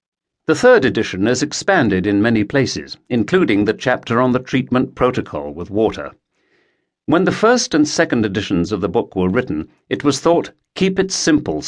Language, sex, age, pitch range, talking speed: English, male, 60-79, 105-145 Hz, 175 wpm